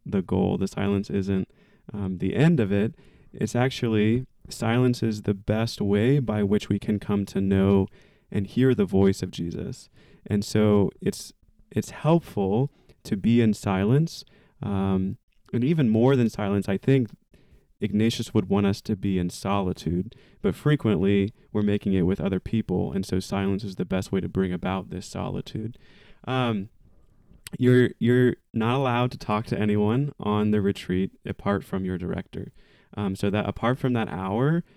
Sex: male